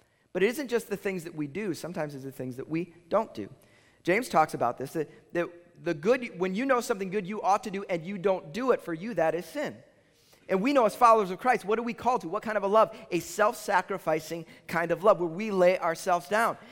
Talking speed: 255 wpm